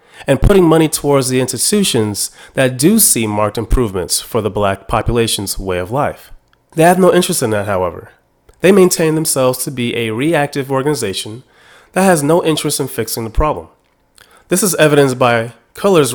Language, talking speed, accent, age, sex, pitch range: English, 170 wpm, American, 30-49, male, 115-165 Hz